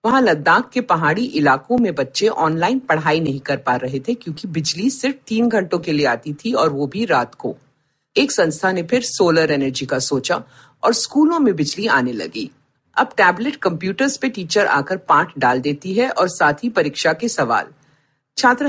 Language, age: Hindi, 50-69